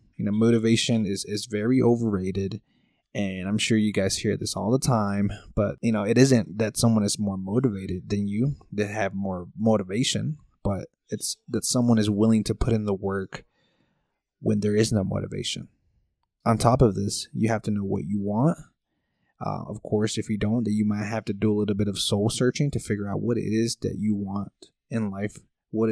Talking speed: 210 wpm